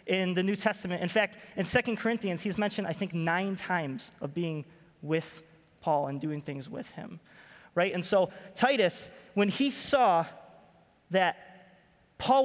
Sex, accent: male, American